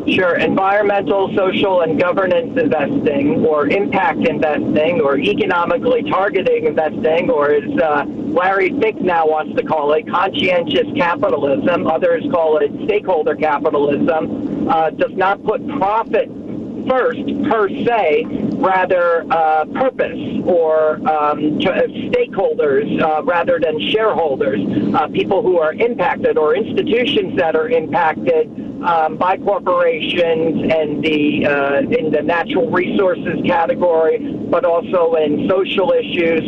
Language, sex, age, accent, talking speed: English, male, 50-69, American, 125 wpm